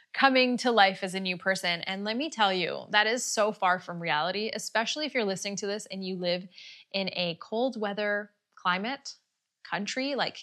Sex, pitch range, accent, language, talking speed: female, 180-225 Hz, American, English, 195 wpm